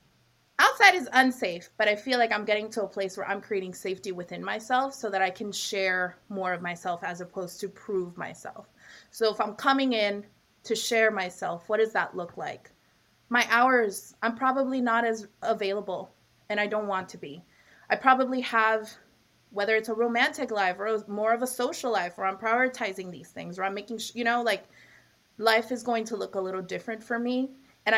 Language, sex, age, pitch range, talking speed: English, female, 20-39, 190-235 Hz, 200 wpm